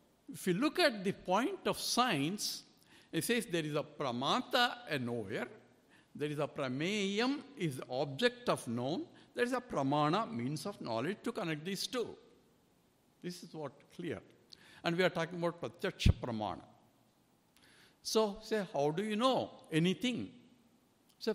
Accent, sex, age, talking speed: Indian, male, 60-79, 150 wpm